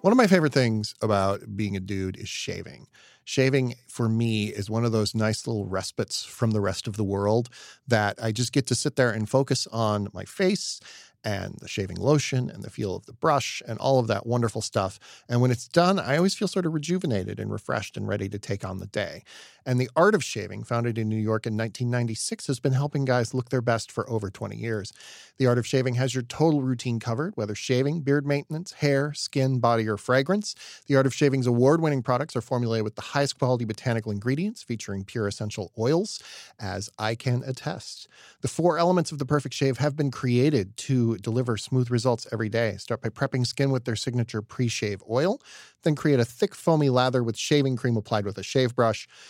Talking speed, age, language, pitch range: 215 wpm, 40-59, English, 110-140 Hz